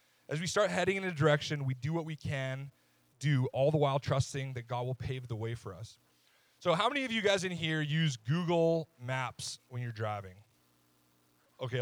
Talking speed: 205 wpm